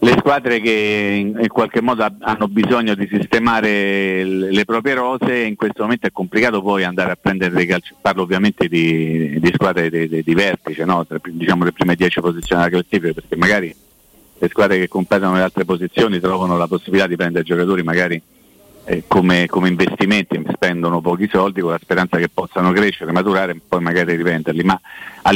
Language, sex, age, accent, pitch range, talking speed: Italian, male, 40-59, native, 90-105 Hz, 180 wpm